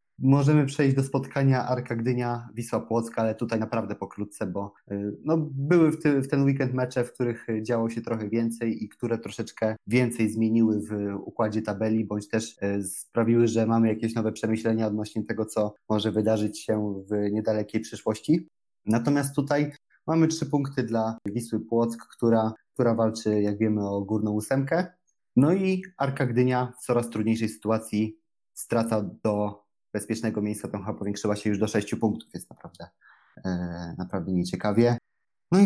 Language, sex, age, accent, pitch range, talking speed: Polish, male, 20-39, native, 110-130 Hz, 150 wpm